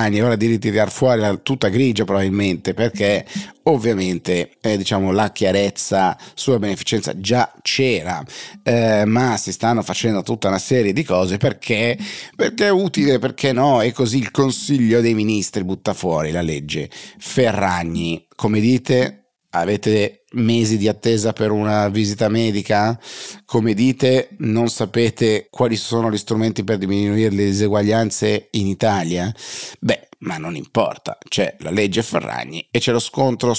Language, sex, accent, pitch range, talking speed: Italian, male, native, 95-120 Hz, 145 wpm